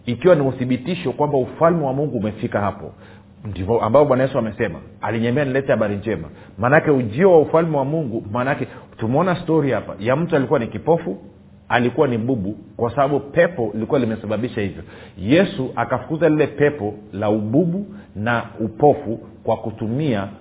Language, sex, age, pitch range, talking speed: Swahili, male, 40-59, 105-145 Hz, 155 wpm